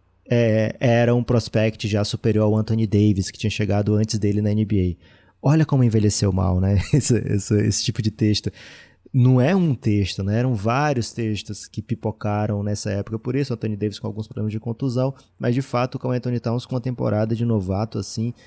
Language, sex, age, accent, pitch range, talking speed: Portuguese, male, 20-39, Brazilian, 105-125 Hz, 200 wpm